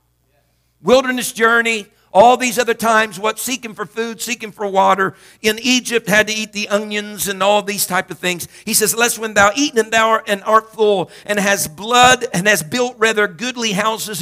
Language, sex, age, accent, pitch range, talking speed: English, male, 50-69, American, 180-225 Hz, 195 wpm